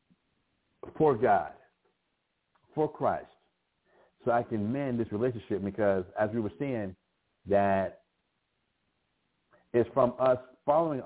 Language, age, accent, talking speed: English, 60-79, American, 110 wpm